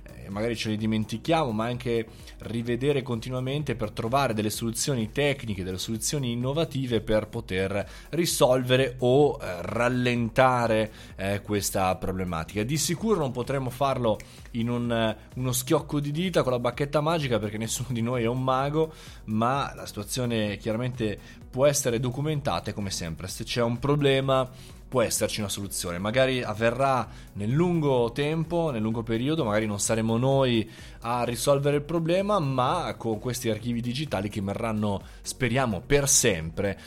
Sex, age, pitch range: male, 20-39, 100-135 Hz